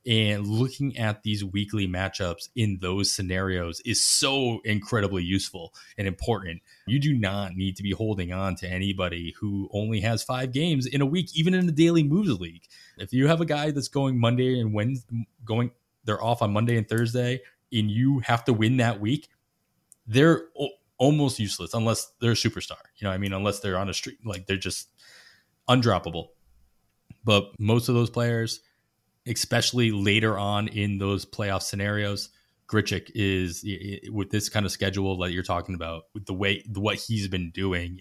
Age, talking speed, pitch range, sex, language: 20-39, 180 wpm, 95-115 Hz, male, English